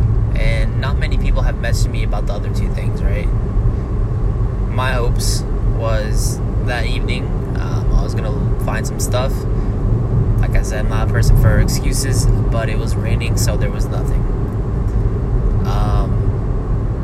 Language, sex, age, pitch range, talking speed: English, male, 20-39, 105-120 Hz, 155 wpm